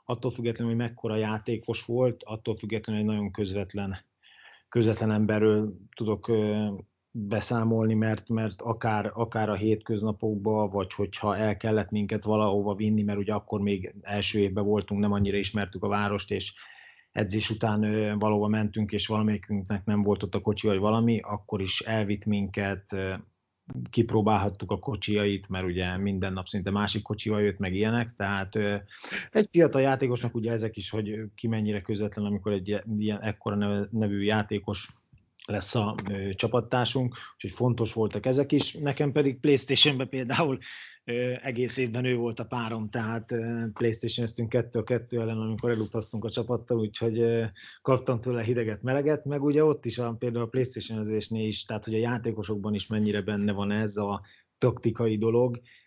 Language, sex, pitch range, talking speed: Hungarian, male, 105-115 Hz, 155 wpm